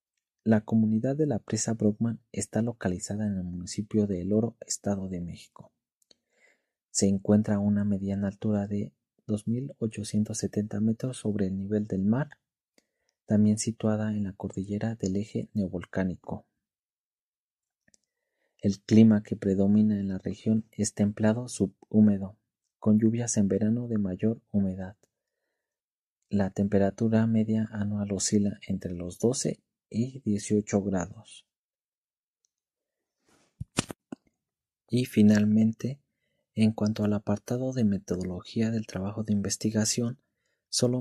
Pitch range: 100-110 Hz